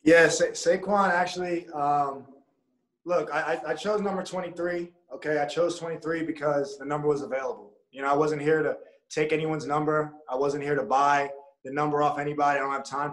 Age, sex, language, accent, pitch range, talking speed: 20-39, male, English, American, 140-175 Hz, 195 wpm